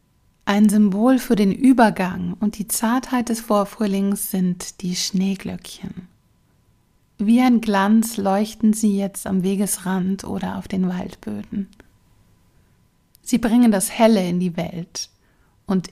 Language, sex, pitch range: German, female, 190-225 Hz